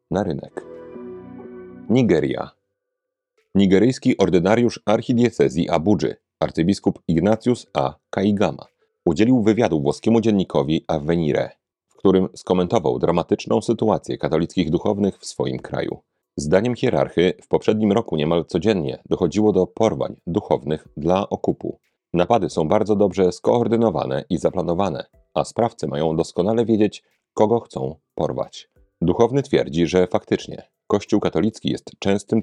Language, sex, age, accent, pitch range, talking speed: Polish, male, 40-59, native, 85-110 Hz, 115 wpm